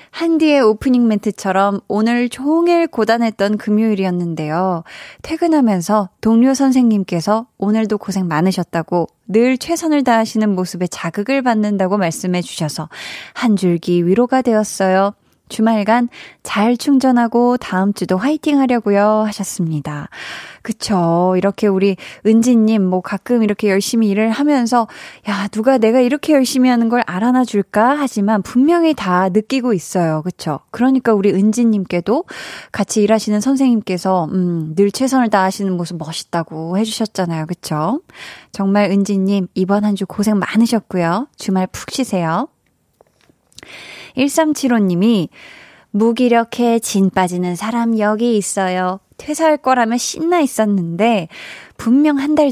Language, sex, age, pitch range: Korean, female, 20-39, 190-255 Hz